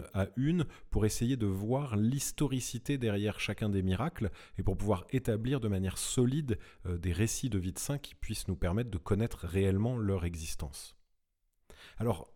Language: French